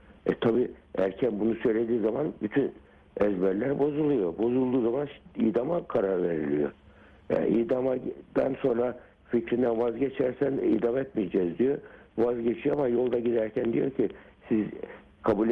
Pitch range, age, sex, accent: 105-135 Hz, 60-79, male, native